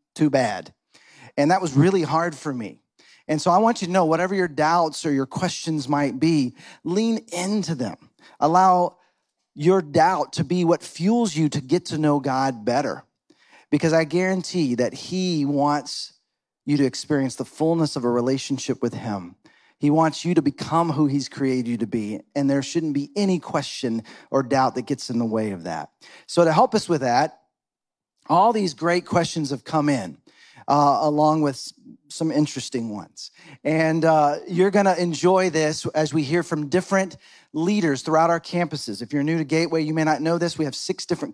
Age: 40-59